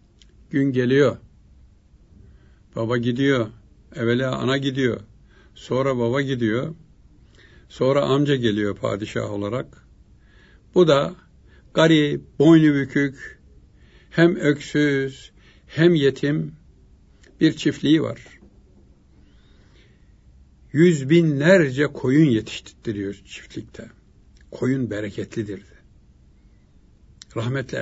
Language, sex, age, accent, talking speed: Turkish, male, 60-79, native, 75 wpm